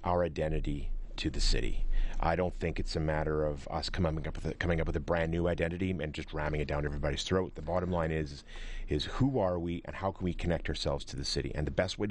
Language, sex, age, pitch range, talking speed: English, male, 40-59, 75-90 Hz, 260 wpm